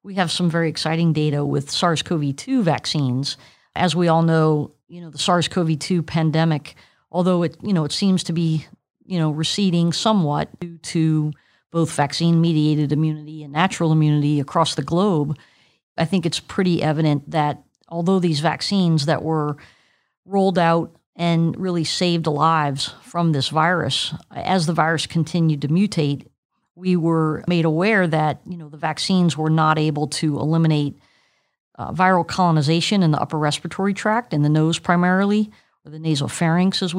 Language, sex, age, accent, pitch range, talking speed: English, female, 40-59, American, 155-180 Hz, 155 wpm